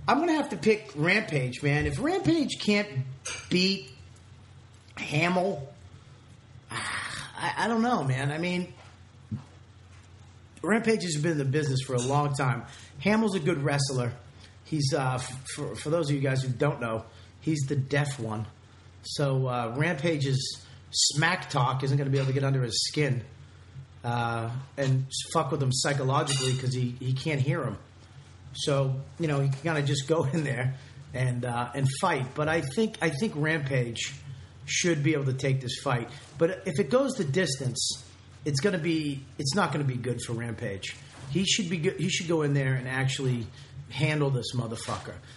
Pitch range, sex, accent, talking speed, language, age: 125-155 Hz, male, American, 180 wpm, English, 30-49